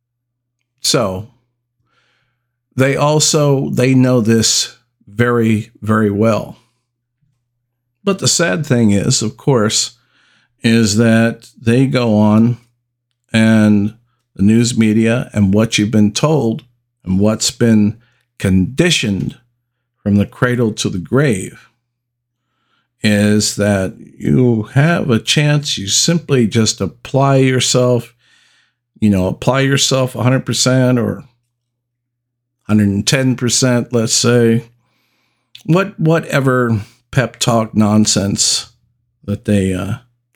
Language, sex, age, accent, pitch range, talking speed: English, male, 50-69, American, 110-125 Hz, 100 wpm